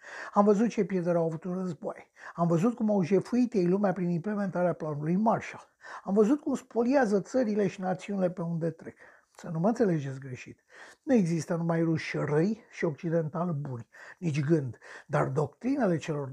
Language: Romanian